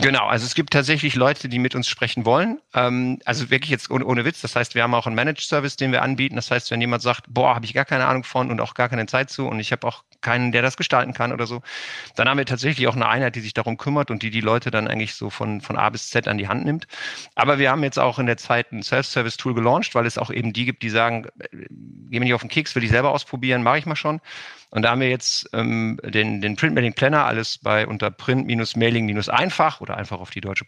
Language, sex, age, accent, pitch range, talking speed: German, male, 50-69, German, 110-130 Hz, 265 wpm